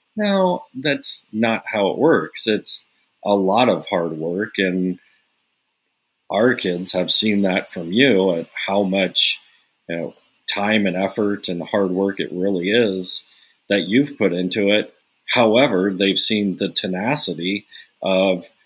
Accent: American